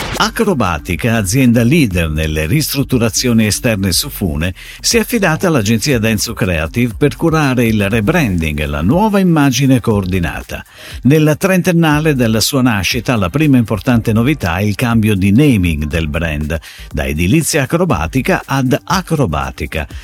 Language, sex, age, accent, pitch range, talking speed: Italian, male, 50-69, native, 100-150 Hz, 130 wpm